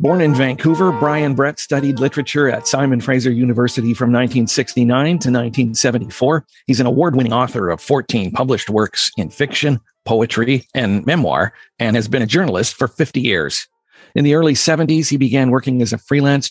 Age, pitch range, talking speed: 50-69, 120-150 Hz, 165 wpm